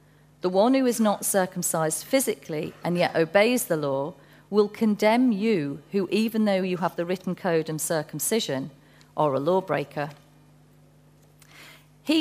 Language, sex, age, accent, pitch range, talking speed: English, female, 40-59, British, 150-195 Hz, 145 wpm